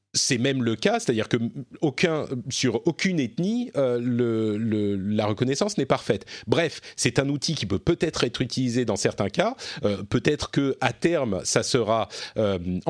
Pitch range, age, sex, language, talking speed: 110-150 Hz, 40-59, male, French, 165 wpm